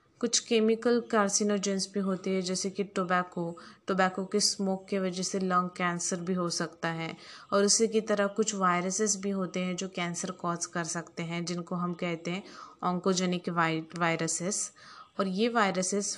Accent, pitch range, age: native, 180-215 Hz, 20-39